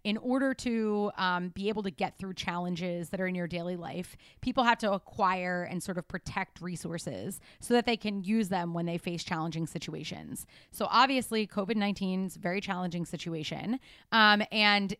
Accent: American